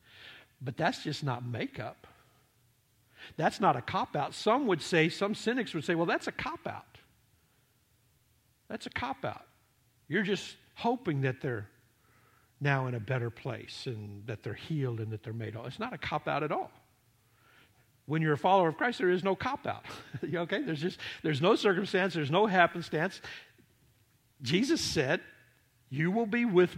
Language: English